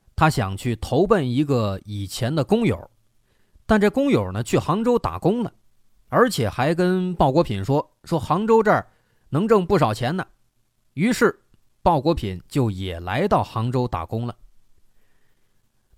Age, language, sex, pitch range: 30-49, Chinese, male, 115-180 Hz